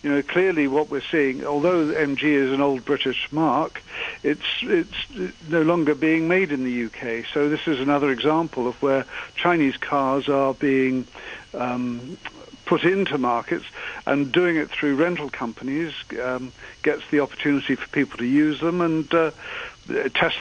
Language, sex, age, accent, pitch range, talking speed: English, male, 50-69, British, 135-160 Hz, 160 wpm